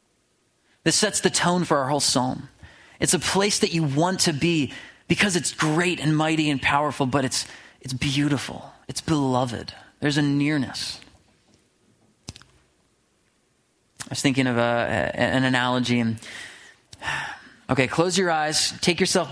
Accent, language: American, English